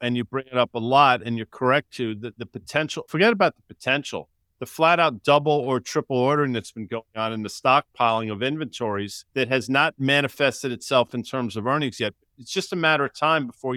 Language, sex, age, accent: English, male, 50-69, American